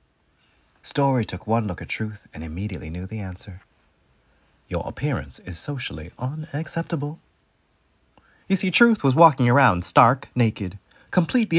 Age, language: 30-49, English